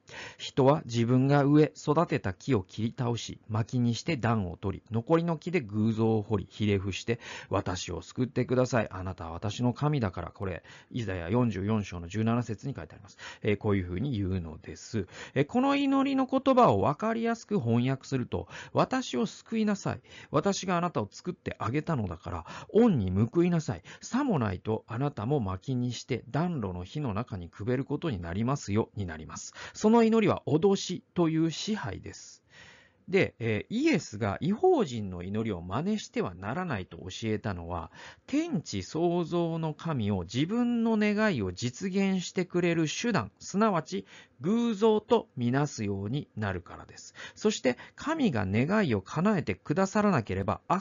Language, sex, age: Japanese, male, 40-59